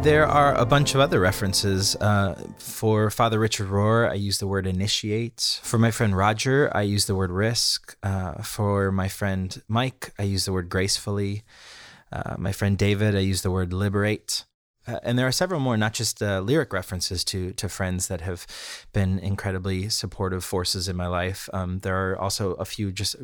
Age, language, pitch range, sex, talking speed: 30-49, English, 95-110 Hz, male, 195 wpm